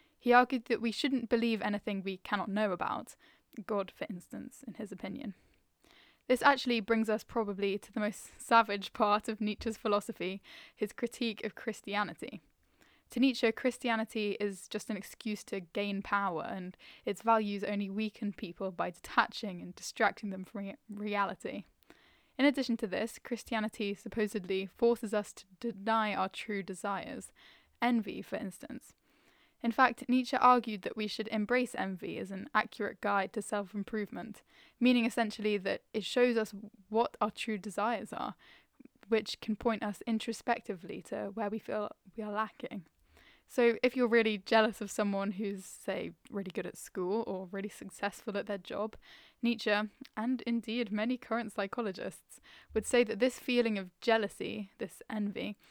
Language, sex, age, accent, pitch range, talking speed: English, female, 10-29, British, 205-235 Hz, 155 wpm